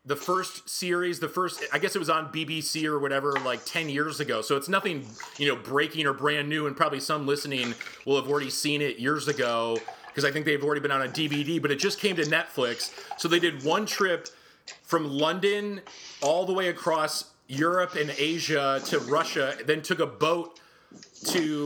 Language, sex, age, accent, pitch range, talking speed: English, male, 30-49, American, 140-165 Hz, 200 wpm